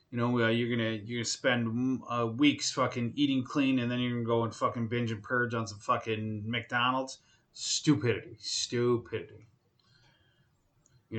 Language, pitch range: English, 110-130 Hz